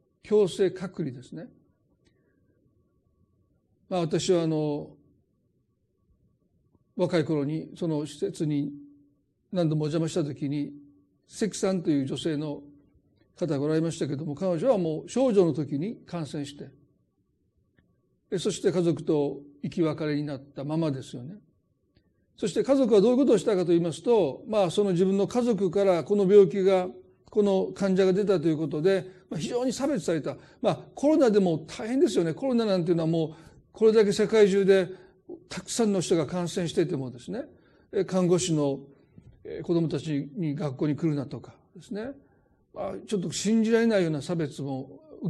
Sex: male